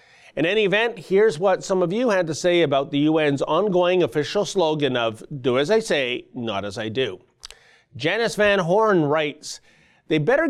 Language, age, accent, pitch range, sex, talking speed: English, 40-59, American, 145-195 Hz, male, 185 wpm